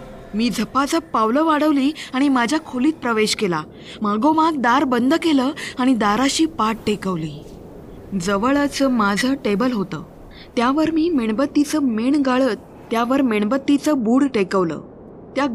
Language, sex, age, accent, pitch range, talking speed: Marathi, female, 20-39, native, 210-280 Hz, 120 wpm